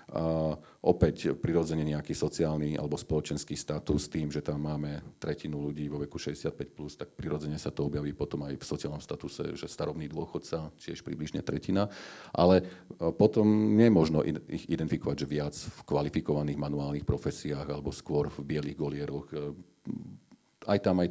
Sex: male